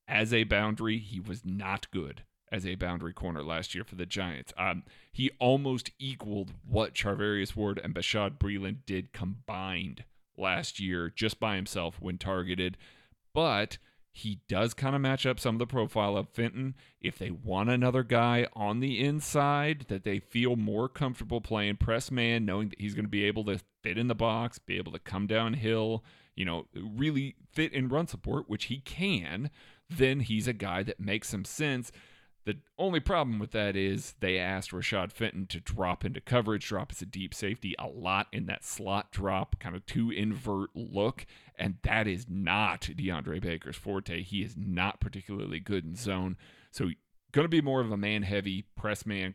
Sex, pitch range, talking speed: male, 95-120 Hz, 185 wpm